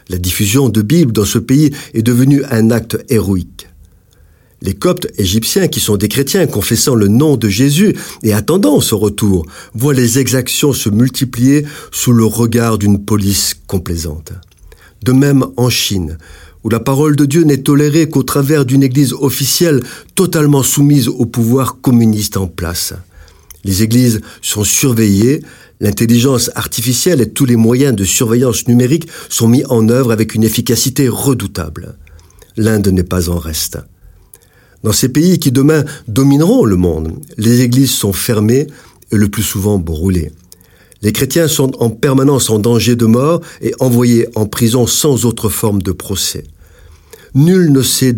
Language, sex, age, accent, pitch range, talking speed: French, male, 50-69, French, 95-135 Hz, 155 wpm